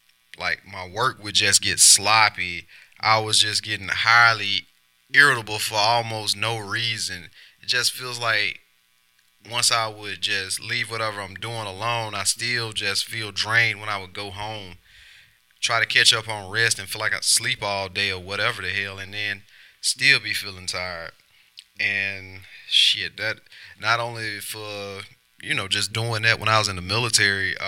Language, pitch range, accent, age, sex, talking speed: English, 95-115 Hz, American, 20-39, male, 175 wpm